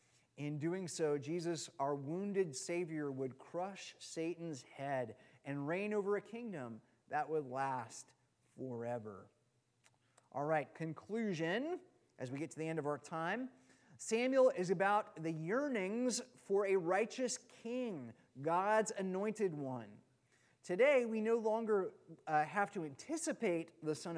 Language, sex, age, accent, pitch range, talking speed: English, male, 30-49, American, 140-210 Hz, 135 wpm